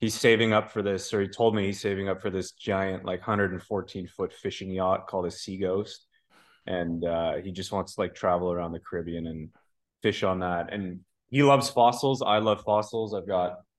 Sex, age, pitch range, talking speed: male, 20-39, 95-125 Hz, 210 wpm